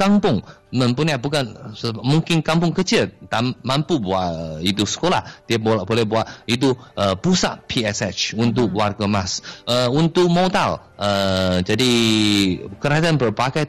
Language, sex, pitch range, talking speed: Malay, male, 105-145 Hz, 125 wpm